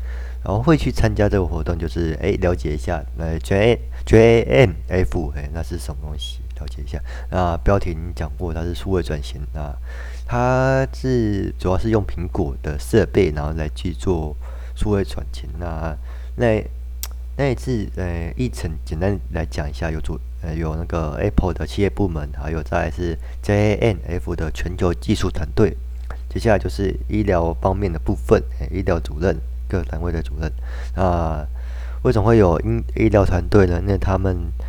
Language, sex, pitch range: Chinese, male, 70-95 Hz